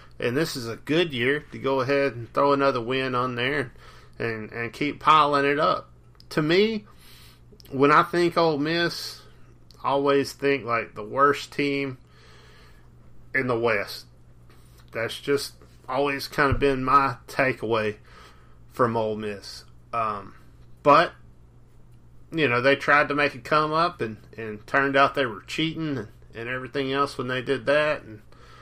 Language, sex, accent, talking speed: English, male, American, 160 wpm